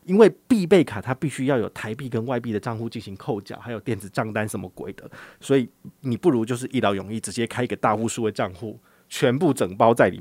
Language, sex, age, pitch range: Chinese, male, 20-39, 110-145 Hz